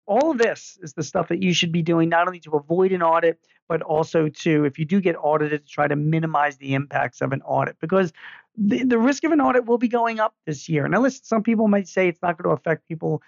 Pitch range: 150-185 Hz